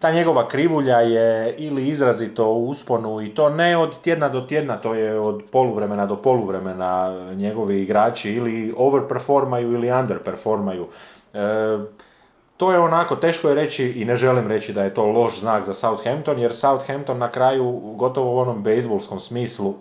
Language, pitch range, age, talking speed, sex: Croatian, 100-120 Hz, 30-49, 165 wpm, male